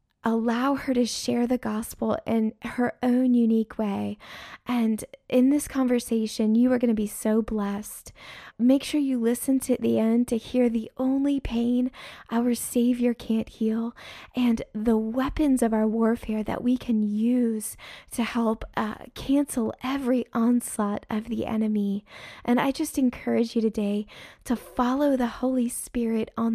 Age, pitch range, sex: 20-39, 215-250 Hz, female